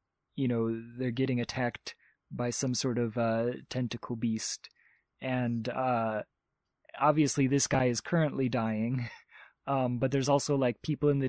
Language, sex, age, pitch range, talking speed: English, male, 20-39, 120-135 Hz, 150 wpm